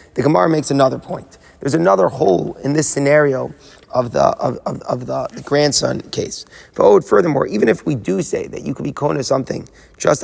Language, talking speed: English, 205 wpm